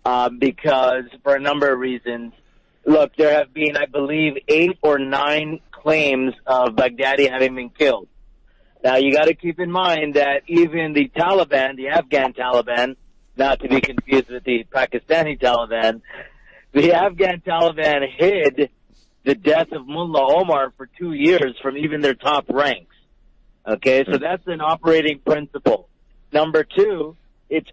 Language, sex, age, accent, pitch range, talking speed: English, male, 50-69, American, 135-165 Hz, 150 wpm